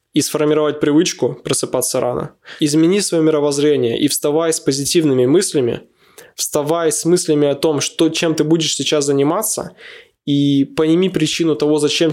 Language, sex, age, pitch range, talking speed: Russian, male, 20-39, 145-170 Hz, 145 wpm